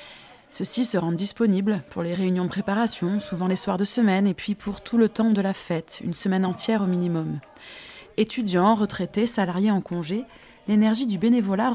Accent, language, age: French, French, 20-39